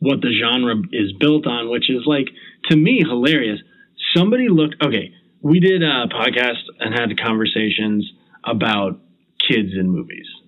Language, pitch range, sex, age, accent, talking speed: English, 110-155 Hz, male, 30-49, American, 150 wpm